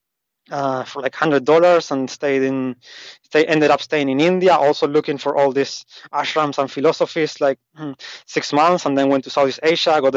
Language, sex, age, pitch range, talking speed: English, male, 20-39, 140-165 Hz, 190 wpm